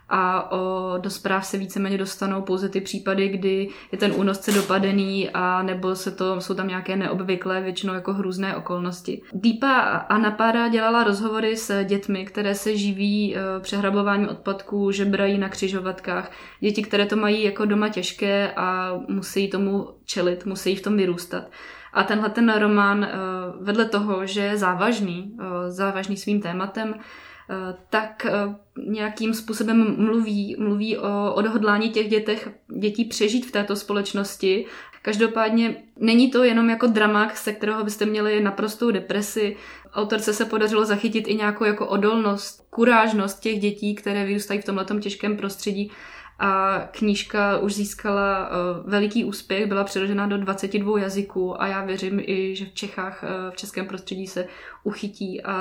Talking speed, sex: 145 wpm, female